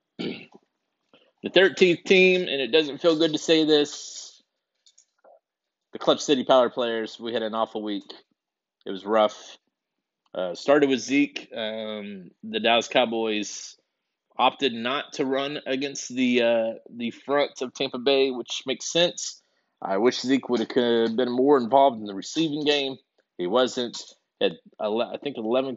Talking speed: 150 wpm